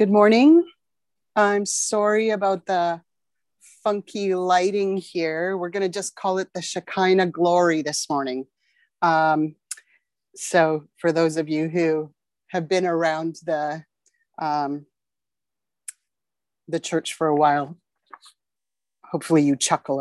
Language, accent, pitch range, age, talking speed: English, American, 165-210 Hz, 30-49, 115 wpm